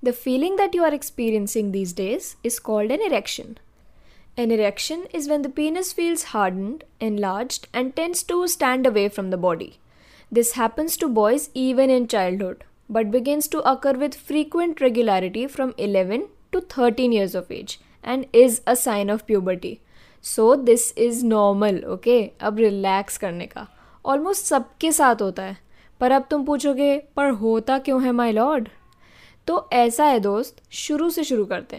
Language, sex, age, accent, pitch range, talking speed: English, female, 20-39, Indian, 210-280 Hz, 150 wpm